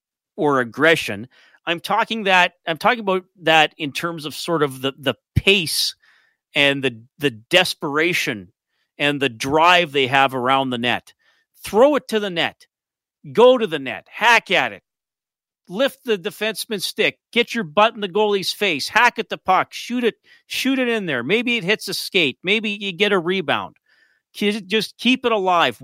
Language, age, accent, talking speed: English, 40-59, American, 175 wpm